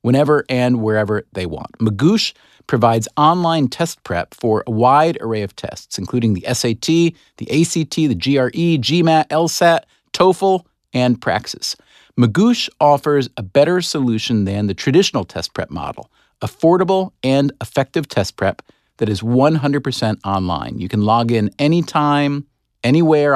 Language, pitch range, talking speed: English, 120-165 Hz, 140 wpm